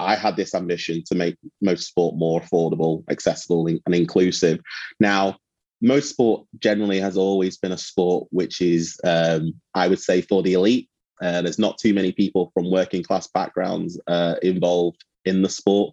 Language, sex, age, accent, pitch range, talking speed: English, male, 30-49, British, 85-100 Hz, 175 wpm